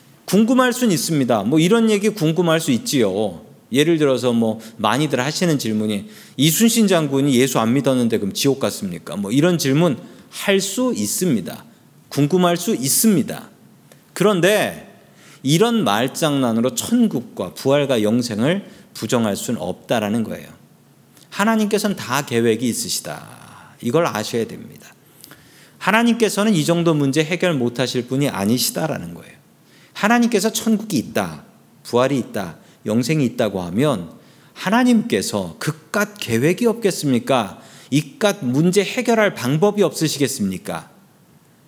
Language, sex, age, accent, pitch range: Korean, male, 40-59, native, 135-210 Hz